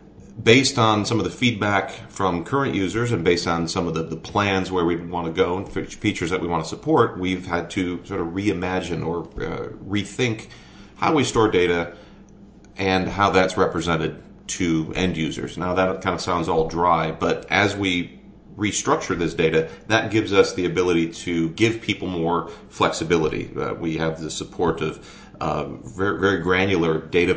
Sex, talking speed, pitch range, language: male, 180 wpm, 80-100 Hz, English